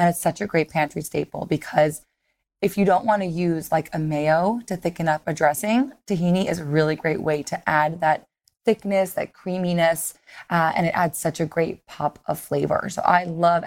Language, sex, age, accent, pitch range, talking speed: English, female, 20-39, American, 160-195 Hz, 200 wpm